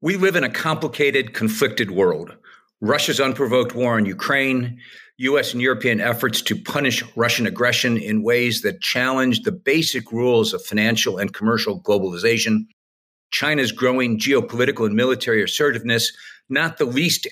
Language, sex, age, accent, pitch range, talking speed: English, male, 50-69, American, 115-145 Hz, 140 wpm